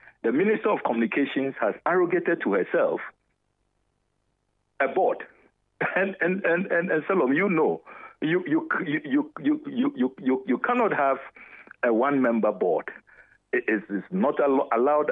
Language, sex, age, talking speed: English, male, 60-79, 135 wpm